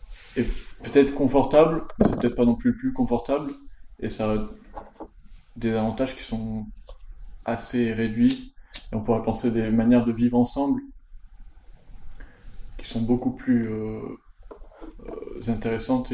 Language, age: French, 20-39